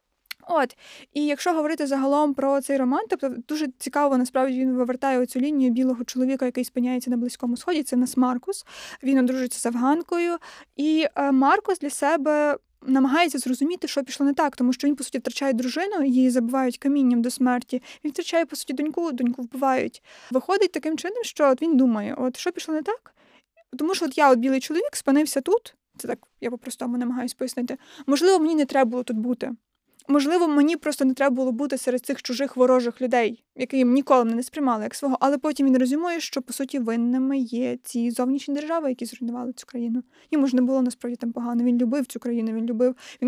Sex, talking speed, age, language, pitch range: female, 200 wpm, 20-39, Ukrainian, 250-295 Hz